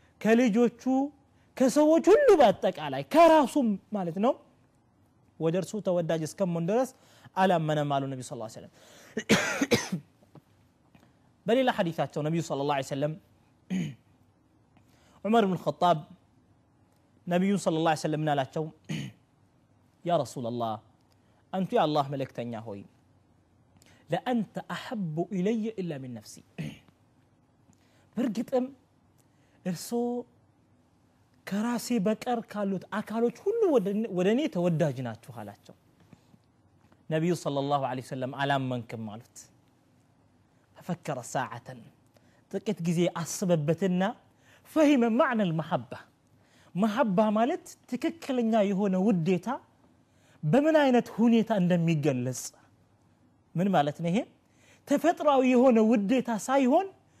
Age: 30-49